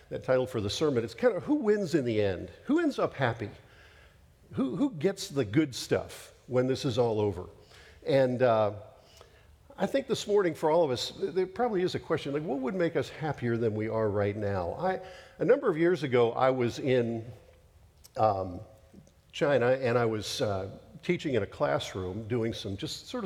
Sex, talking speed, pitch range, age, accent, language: male, 200 wpm, 105-145 Hz, 50-69, American, English